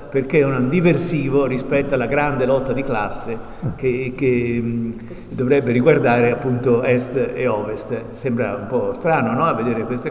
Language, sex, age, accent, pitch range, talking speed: Italian, male, 50-69, native, 130-155 Hz, 155 wpm